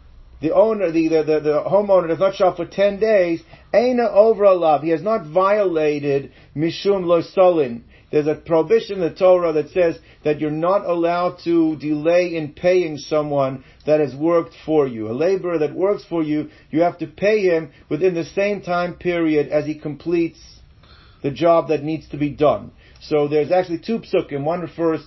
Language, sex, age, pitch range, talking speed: English, male, 50-69, 150-185 Hz, 180 wpm